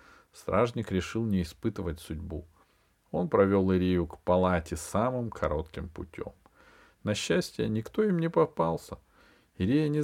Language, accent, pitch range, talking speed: Russian, native, 85-110 Hz, 125 wpm